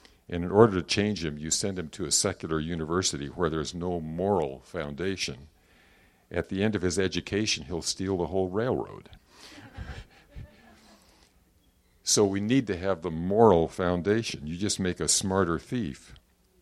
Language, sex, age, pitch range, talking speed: English, male, 50-69, 80-95 Hz, 155 wpm